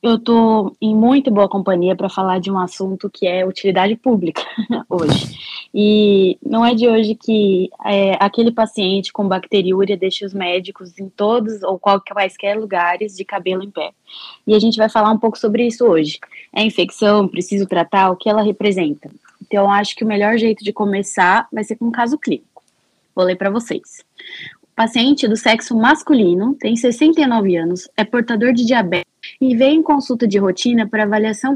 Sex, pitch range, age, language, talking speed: female, 190-240 Hz, 10-29, Portuguese, 185 wpm